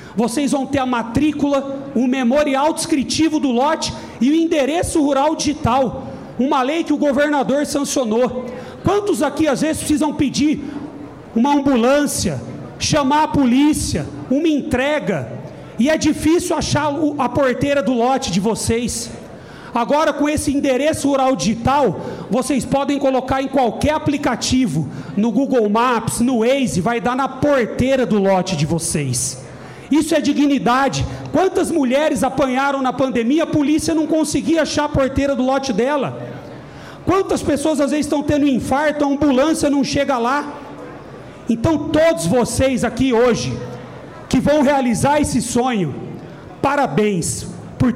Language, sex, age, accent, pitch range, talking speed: Portuguese, male, 40-59, Brazilian, 240-295 Hz, 140 wpm